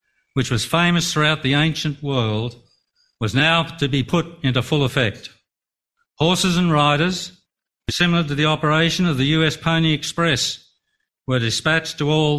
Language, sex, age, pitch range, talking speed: English, male, 60-79, 125-165 Hz, 150 wpm